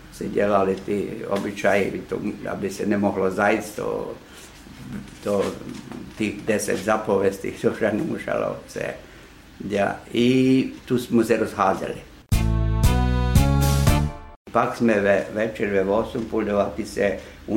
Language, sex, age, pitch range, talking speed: Czech, male, 60-79, 105-125 Hz, 95 wpm